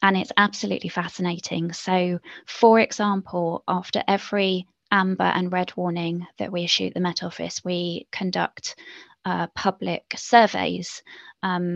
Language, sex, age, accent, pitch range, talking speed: English, female, 20-39, British, 180-200 Hz, 135 wpm